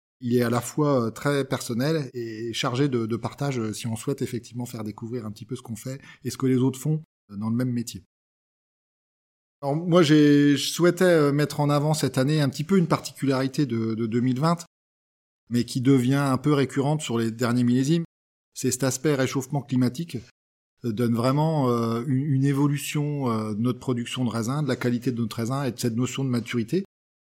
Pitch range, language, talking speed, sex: 120-145 Hz, French, 200 wpm, male